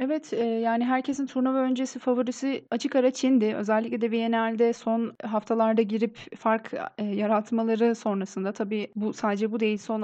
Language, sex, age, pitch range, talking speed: Turkish, female, 30-49, 220-260 Hz, 145 wpm